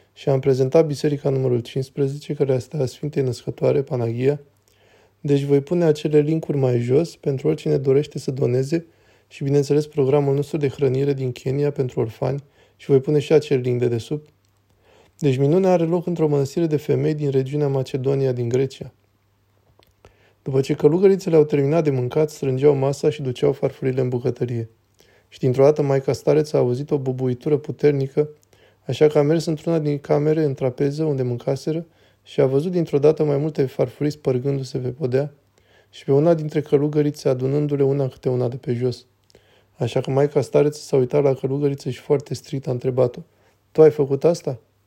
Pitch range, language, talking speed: 130-150 Hz, Romanian, 175 wpm